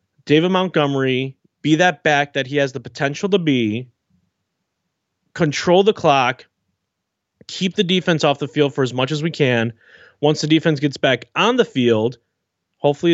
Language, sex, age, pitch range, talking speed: English, male, 30-49, 135-180 Hz, 165 wpm